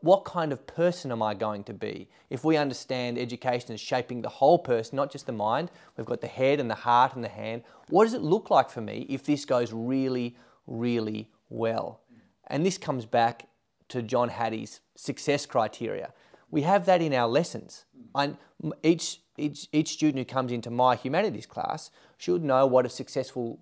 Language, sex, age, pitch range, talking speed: English, male, 30-49, 115-150 Hz, 190 wpm